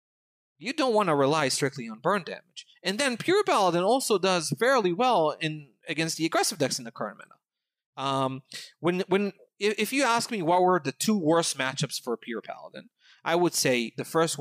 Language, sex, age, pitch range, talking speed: English, male, 30-49, 140-220 Hz, 200 wpm